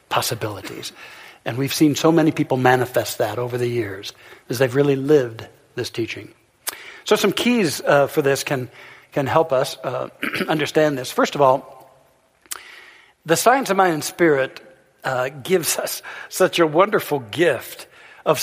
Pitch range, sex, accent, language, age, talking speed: 140-195 Hz, male, American, English, 60-79, 155 wpm